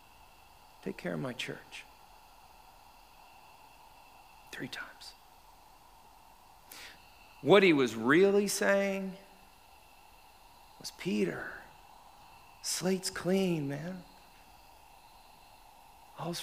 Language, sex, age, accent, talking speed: English, male, 50-69, American, 65 wpm